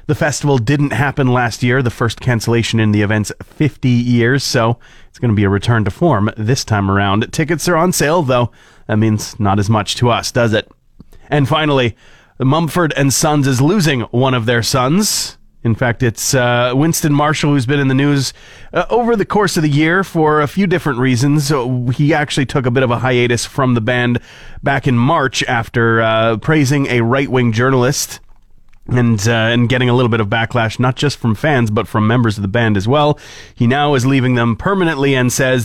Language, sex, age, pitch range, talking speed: English, male, 30-49, 110-140 Hz, 205 wpm